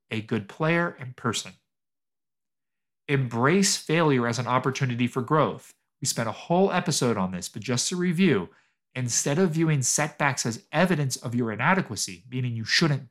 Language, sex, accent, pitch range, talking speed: English, male, American, 125-165 Hz, 160 wpm